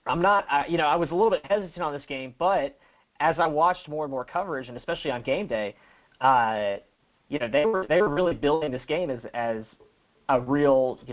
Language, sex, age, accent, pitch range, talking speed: English, male, 30-49, American, 120-150 Hz, 230 wpm